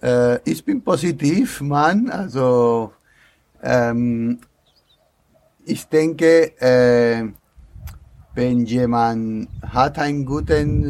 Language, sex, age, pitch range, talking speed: German, male, 50-69, 95-130 Hz, 75 wpm